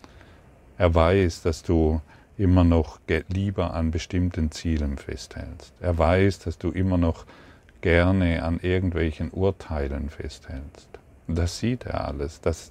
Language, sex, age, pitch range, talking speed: German, male, 50-69, 80-95 Hz, 125 wpm